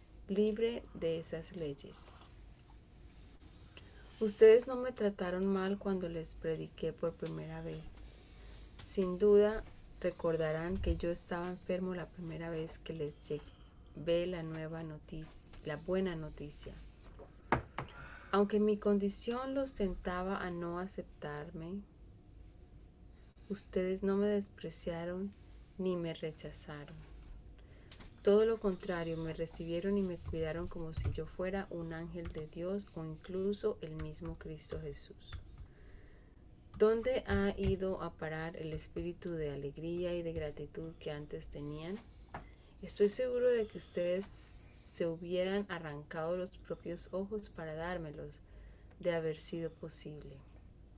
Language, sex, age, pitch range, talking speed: Spanish, female, 30-49, 150-190 Hz, 120 wpm